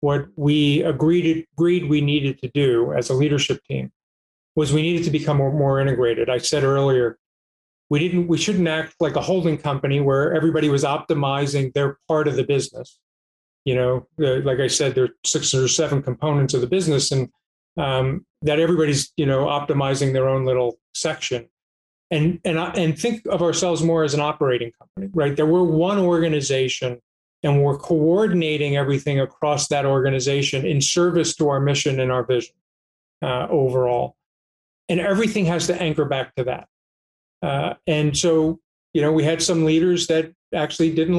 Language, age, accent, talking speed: English, 40-59, American, 175 wpm